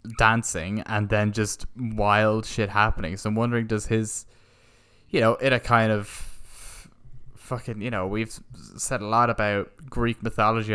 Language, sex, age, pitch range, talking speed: English, male, 20-39, 105-125 Hz, 155 wpm